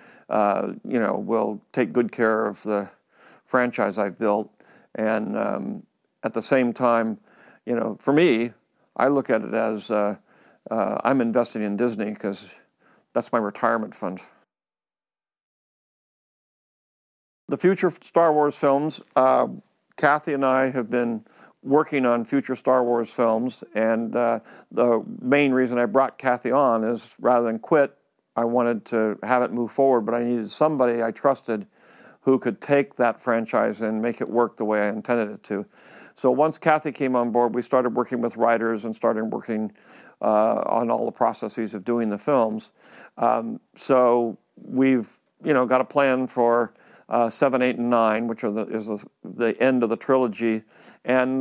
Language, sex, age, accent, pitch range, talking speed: English, male, 50-69, American, 115-130 Hz, 165 wpm